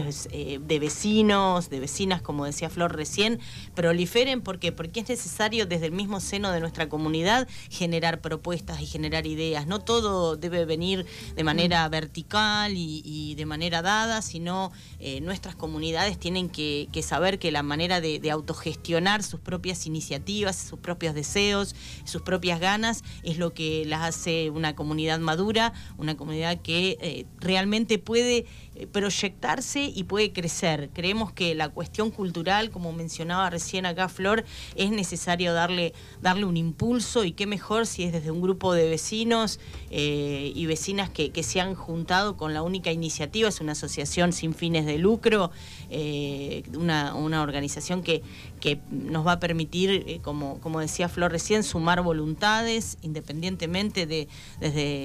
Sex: female